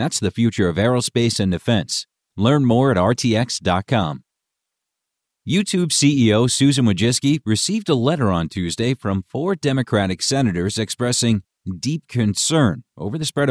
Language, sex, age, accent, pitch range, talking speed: English, male, 40-59, American, 100-130 Hz, 135 wpm